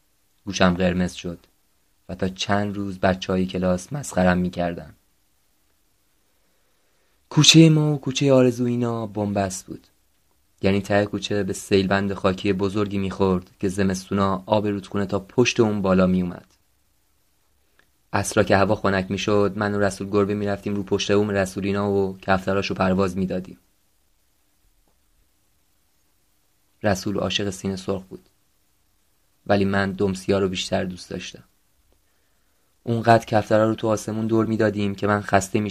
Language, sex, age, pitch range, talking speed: Persian, male, 20-39, 95-100 Hz, 145 wpm